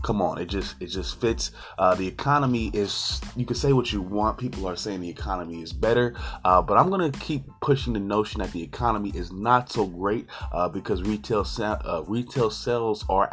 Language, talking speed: English, 210 wpm